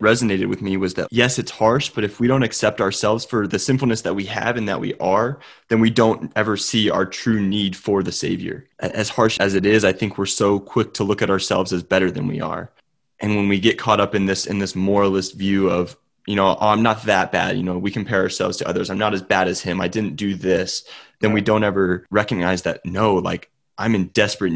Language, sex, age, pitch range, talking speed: English, male, 20-39, 95-110 Hz, 245 wpm